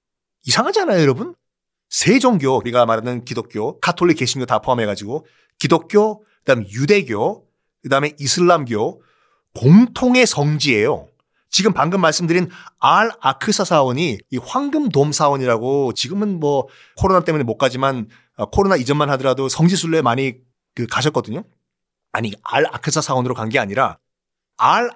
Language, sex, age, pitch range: Korean, male, 40-59, 130-200 Hz